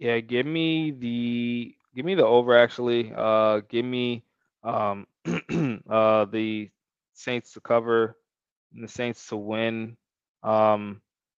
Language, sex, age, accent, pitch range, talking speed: English, male, 20-39, American, 100-110 Hz, 125 wpm